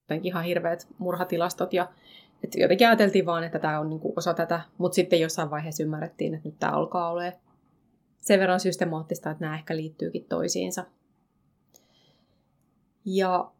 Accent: native